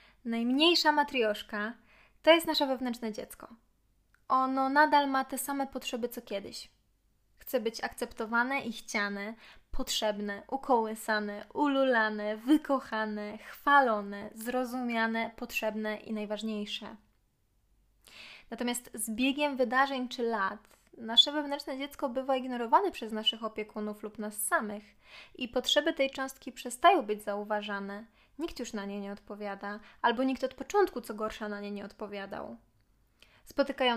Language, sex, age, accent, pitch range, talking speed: Polish, female, 20-39, native, 205-245 Hz, 125 wpm